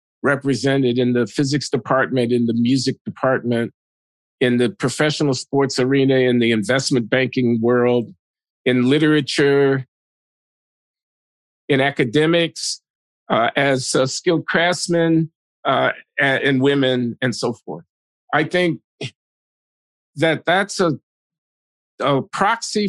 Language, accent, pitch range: English, American, 130-165 Hz